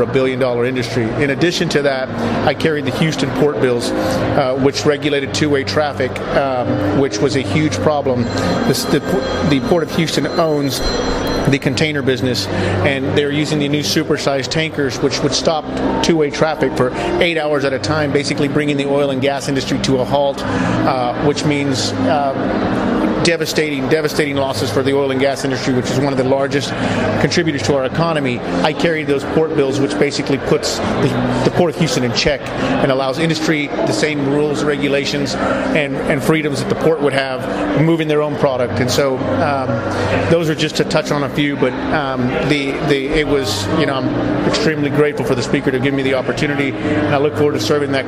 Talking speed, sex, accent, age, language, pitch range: 195 wpm, male, American, 40-59, English, 130-150 Hz